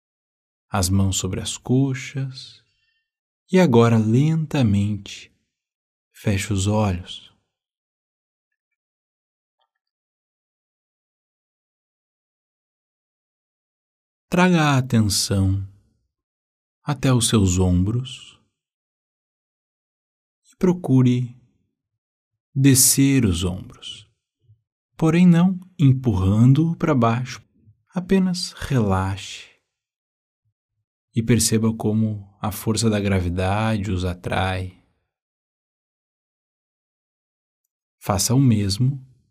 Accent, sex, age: Brazilian, male, 50-69